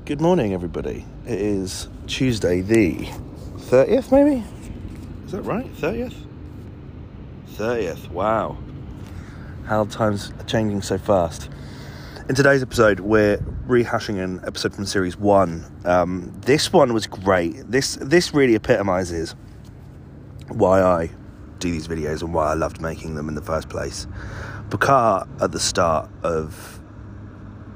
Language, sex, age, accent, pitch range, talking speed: English, male, 30-49, British, 80-105 Hz, 135 wpm